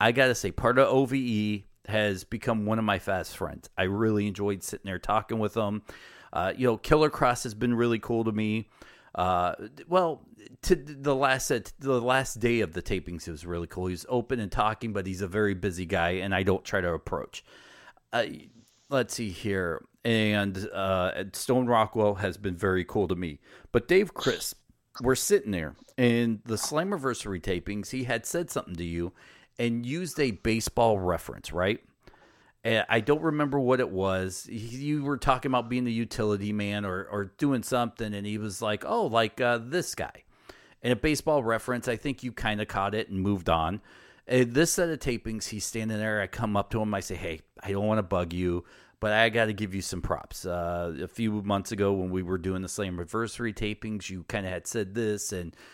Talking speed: 210 wpm